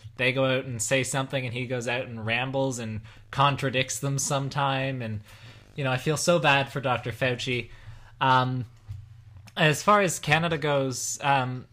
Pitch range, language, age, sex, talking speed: 115-145 Hz, English, 20-39, male, 170 wpm